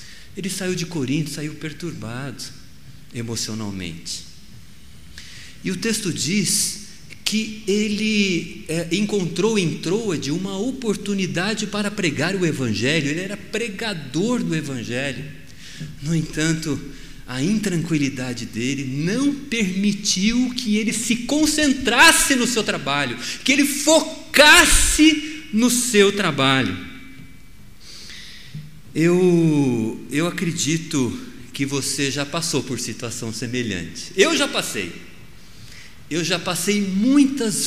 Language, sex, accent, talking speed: Portuguese, male, Brazilian, 105 wpm